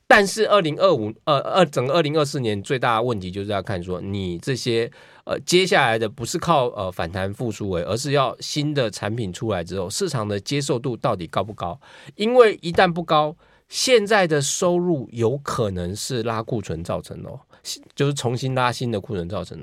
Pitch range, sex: 110-165 Hz, male